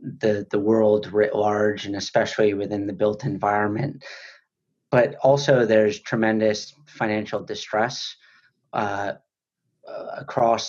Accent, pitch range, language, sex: American, 105-120 Hz, English, male